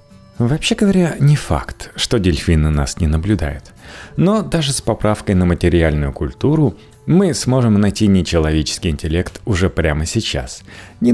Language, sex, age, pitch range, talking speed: Russian, male, 30-49, 80-125 Hz, 135 wpm